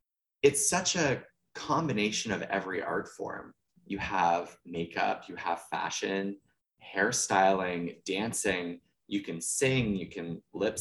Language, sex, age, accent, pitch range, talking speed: English, male, 20-39, American, 90-120 Hz, 120 wpm